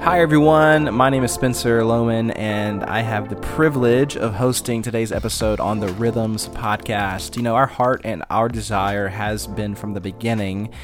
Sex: male